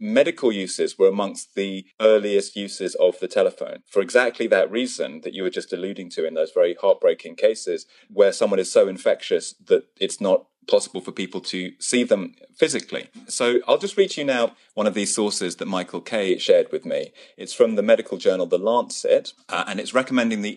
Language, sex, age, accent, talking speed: English, male, 30-49, British, 200 wpm